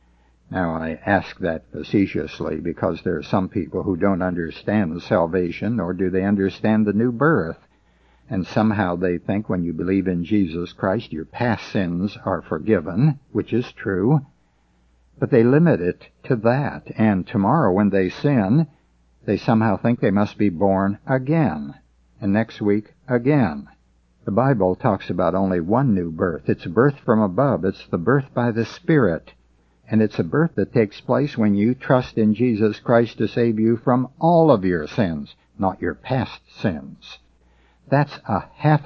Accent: American